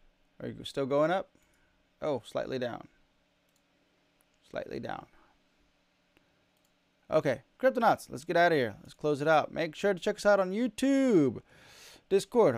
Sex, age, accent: male, 20-39, American